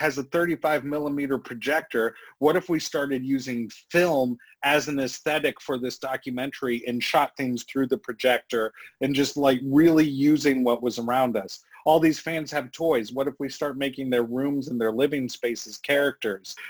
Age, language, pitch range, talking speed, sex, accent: 40-59, English, 120-145 Hz, 175 wpm, male, American